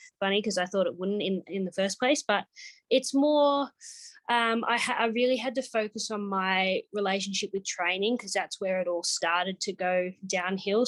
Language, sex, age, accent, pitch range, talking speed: English, female, 20-39, Australian, 180-215 Hz, 200 wpm